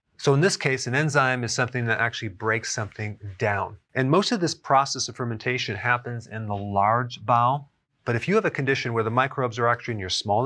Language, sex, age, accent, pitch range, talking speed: English, male, 30-49, American, 110-130 Hz, 225 wpm